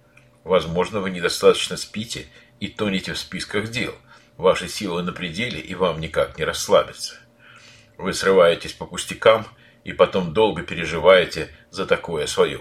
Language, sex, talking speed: Russian, male, 140 wpm